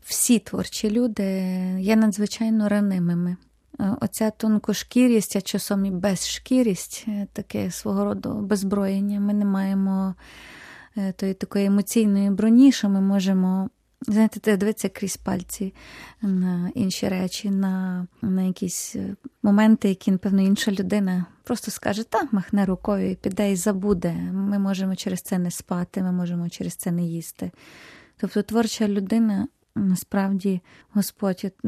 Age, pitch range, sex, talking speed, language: 20-39, 190-220 Hz, female, 125 wpm, Ukrainian